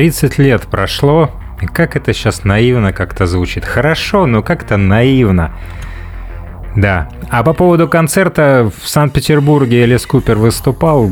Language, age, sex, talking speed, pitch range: Russian, 30-49, male, 130 wpm, 95-140 Hz